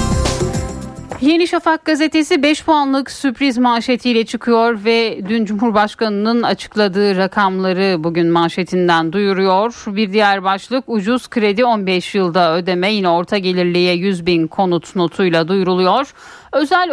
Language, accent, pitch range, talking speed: Turkish, native, 185-245 Hz, 115 wpm